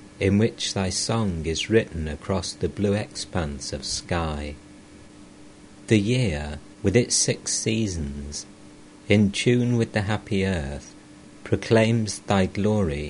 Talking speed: 125 wpm